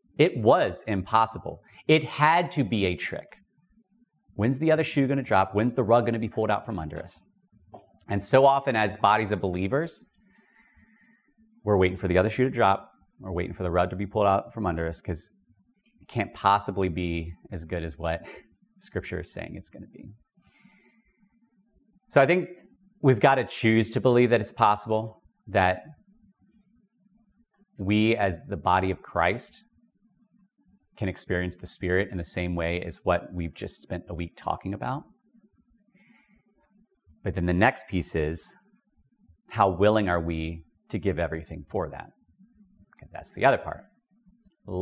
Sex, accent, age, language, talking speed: male, American, 30-49, English, 170 wpm